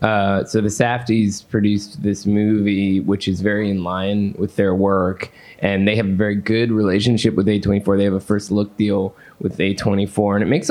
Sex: male